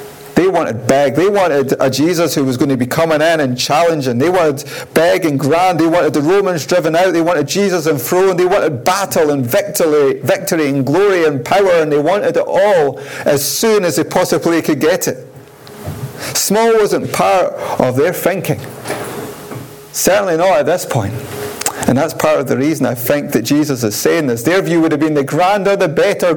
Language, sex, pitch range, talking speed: English, male, 130-165 Hz, 200 wpm